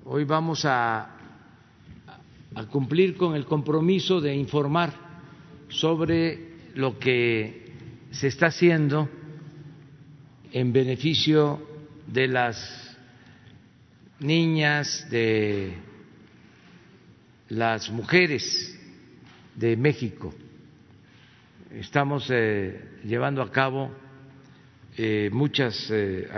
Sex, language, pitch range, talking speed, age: male, Spanish, 115-145 Hz, 75 wpm, 50-69